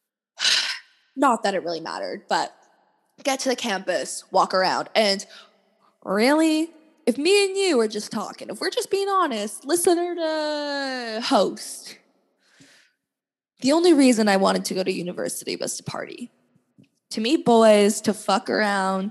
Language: English